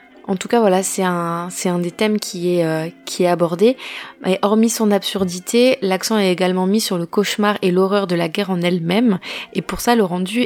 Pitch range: 175-200 Hz